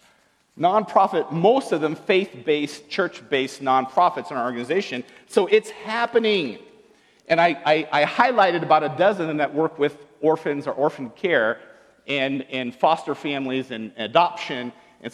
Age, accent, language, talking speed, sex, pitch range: 50-69, American, English, 155 wpm, male, 145-210 Hz